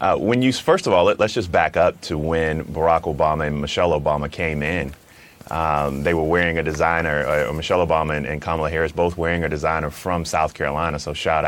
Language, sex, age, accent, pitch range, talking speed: English, male, 30-49, American, 80-100 Hz, 215 wpm